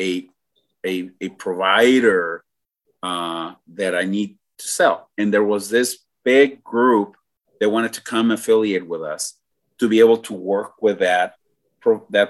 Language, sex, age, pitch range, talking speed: English, male, 30-49, 90-115 Hz, 145 wpm